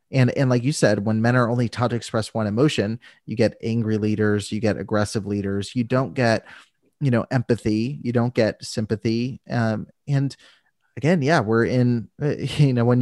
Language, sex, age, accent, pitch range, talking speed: English, male, 30-49, American, 105-125 Hz, 190 wpm